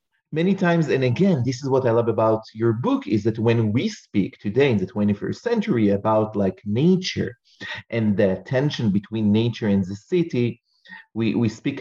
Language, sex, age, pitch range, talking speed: English, male, 30-49, 105-130 Hz, 185 wpm